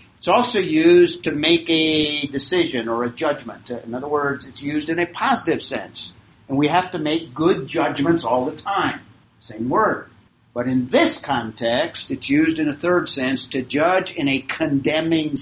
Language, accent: English, American